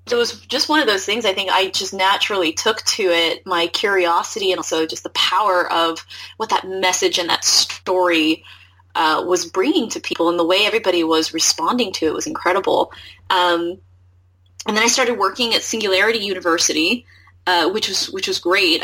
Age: 20-39